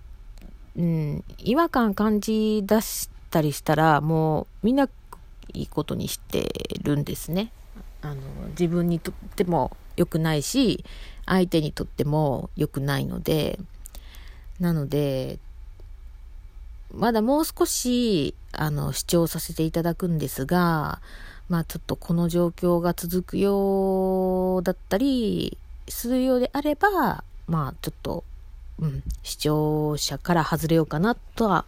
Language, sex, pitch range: Japanese, female, 140-185 Hz